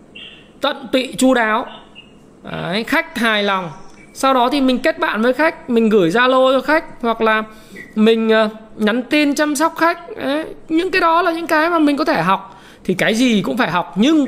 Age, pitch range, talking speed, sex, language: 20-39, 215-275 Hz, 200 wpm, male, Vietnamese